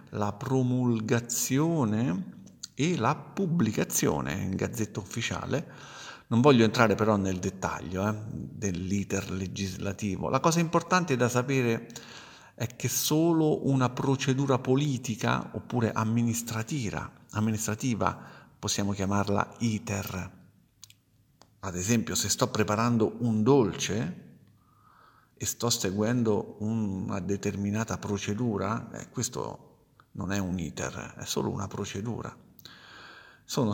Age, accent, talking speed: 50-69, native, 105 wpm